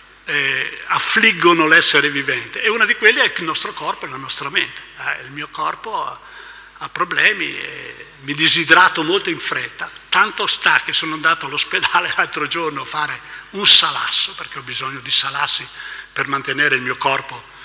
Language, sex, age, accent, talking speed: Italian, male, 60-79, native, 175 wpm